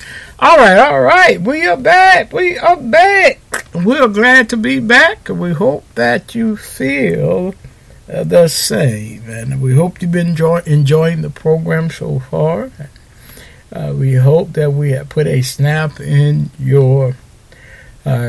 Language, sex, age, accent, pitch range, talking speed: English, male, 60-79, American, 130-185 Hz, 150 wpm